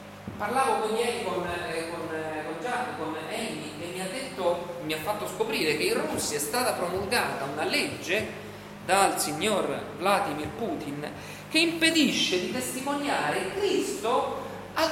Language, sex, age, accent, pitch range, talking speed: Italian, male, 40-59, native, 180-280 Hz, 135 wpm